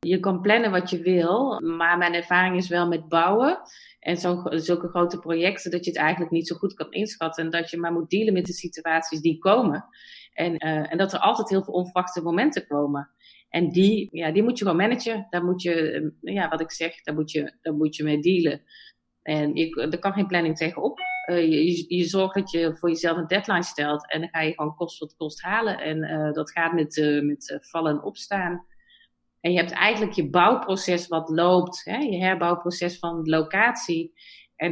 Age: 30-49